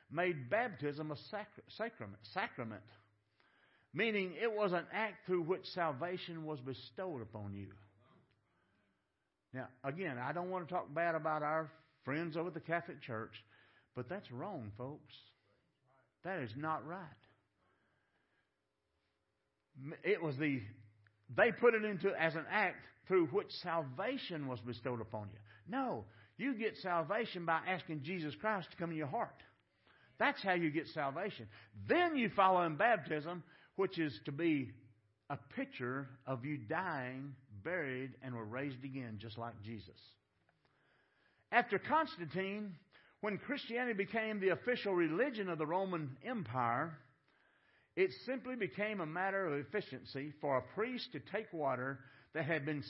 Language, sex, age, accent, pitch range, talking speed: English, male, 50-69, American, 125-190 Hz, 145 wpm